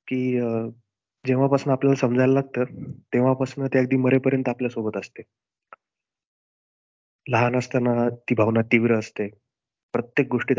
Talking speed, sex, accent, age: 115 wpm, male, native, 30-49